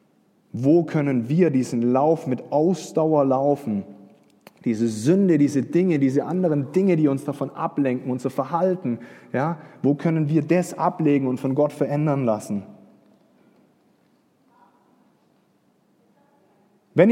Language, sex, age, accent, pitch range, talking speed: German, male, 30-49, German, 145-190 Hz, 115 wpm